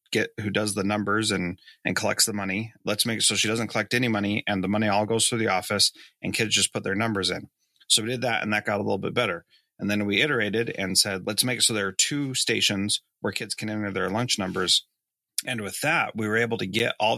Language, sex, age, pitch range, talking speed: English, male, 30-49, 100-115 Hz, 260 wpm